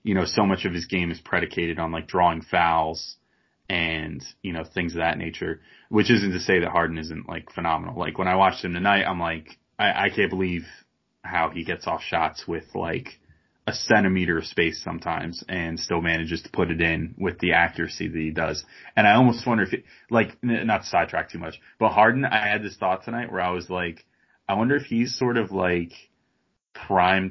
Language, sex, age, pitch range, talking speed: English, male, 20-39, 85-95 Hz, 210 wpm